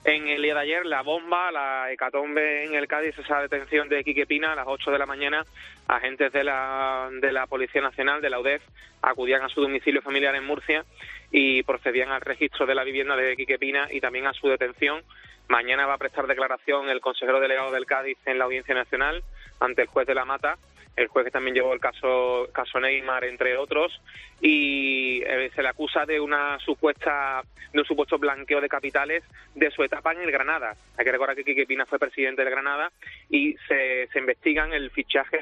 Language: Spanish